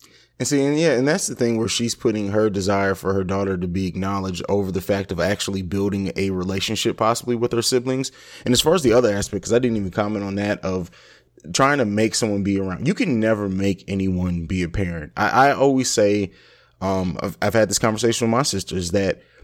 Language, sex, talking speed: English, male, 230 wpm